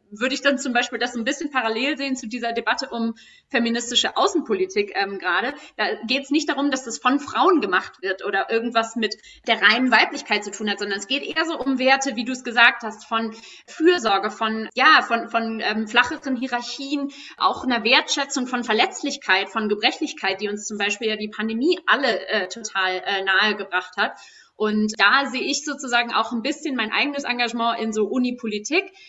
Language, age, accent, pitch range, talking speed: German, 30-49, German, 220-270 Hz, 195 wpm